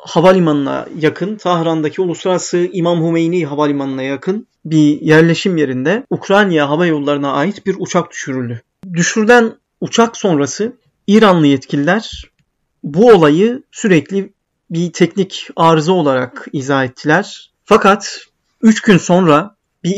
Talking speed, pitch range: 110 wpm, 150-185 Hz